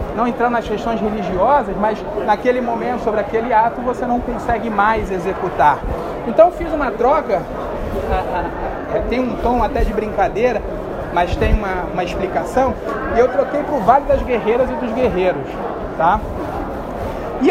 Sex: male